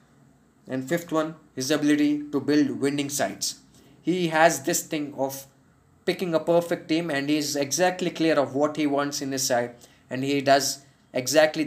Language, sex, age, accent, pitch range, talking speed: Telugu, male, 20-39, native, 135-155 Hz, 175 wpm